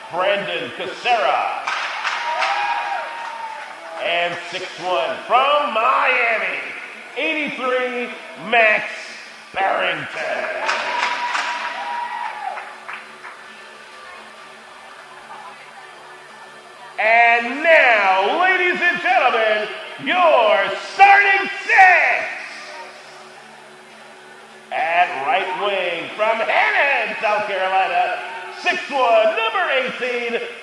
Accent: American